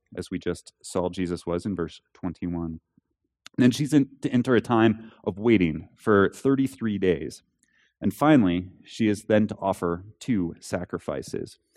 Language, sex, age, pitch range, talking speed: English, male, 30-49, 90-110 Hz, 150 wpm